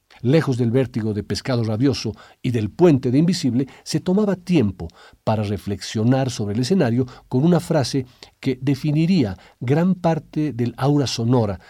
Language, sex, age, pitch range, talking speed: Spanish, male, 50-69, 115-155 Hz, 150 wpm